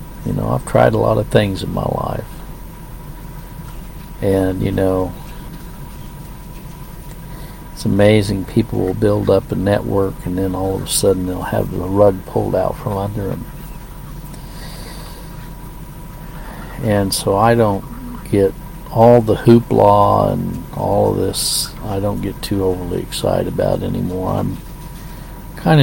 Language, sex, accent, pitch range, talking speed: English, male, American, 95-120 Hz, 135 wpm